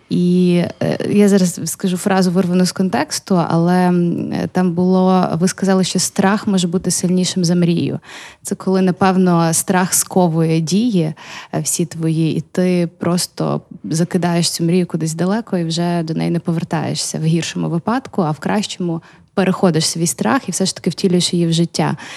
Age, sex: 20-39, female